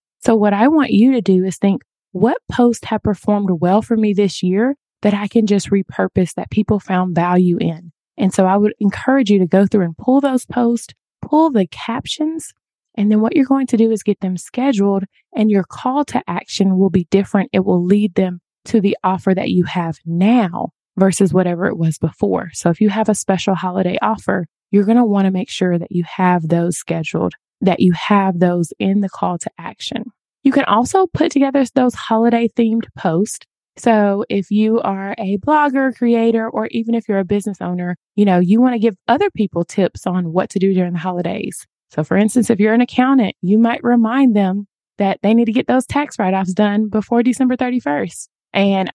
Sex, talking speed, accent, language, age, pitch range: female, 210 wpm, American, English, 20-39, 190-235 Hz